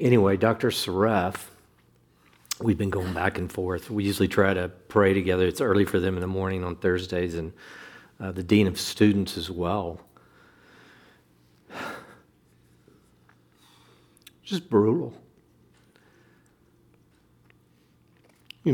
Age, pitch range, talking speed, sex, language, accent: 60-79, 85-105 Hz, 110 wpm, male, English, American